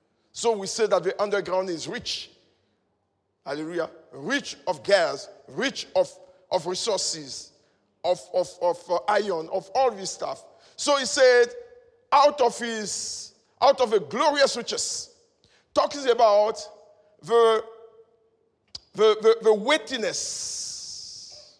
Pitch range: 200-300 Hz